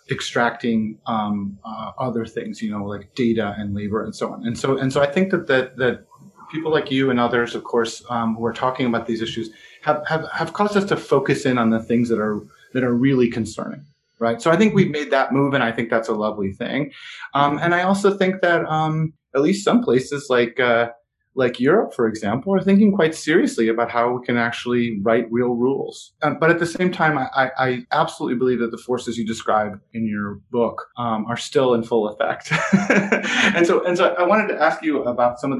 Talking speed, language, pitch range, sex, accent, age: 225 wpm, English, 115-150 Hz, male, American, 30-49